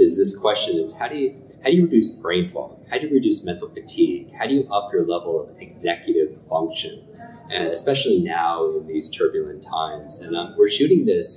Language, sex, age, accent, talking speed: English, male, 30-49, American, 210 wpm